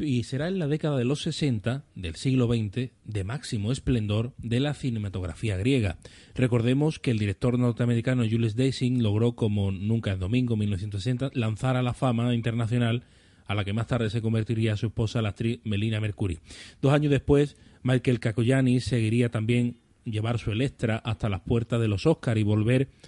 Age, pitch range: 30-49, 110-130 Hz